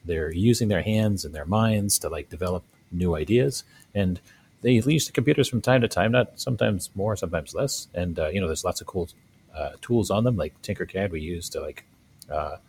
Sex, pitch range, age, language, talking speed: male, 85-110 Hz, 40-59, English, 215 wpm